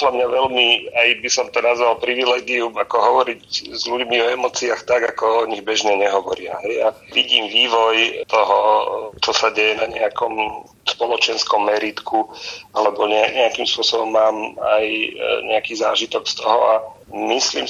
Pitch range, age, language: 105-125 Hz, 40-59, Slovak